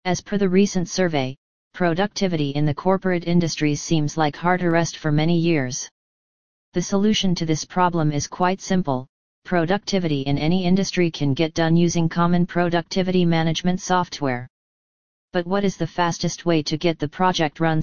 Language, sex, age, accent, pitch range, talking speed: English, female, 40-59, American, 155-180 Hz, 160 wpm